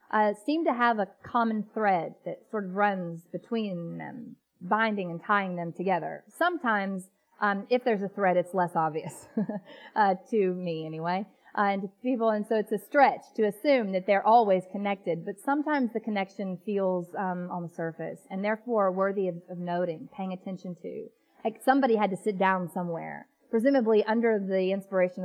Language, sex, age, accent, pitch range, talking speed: English, female, 30-49, American, 185-230 Hz, 180 wpm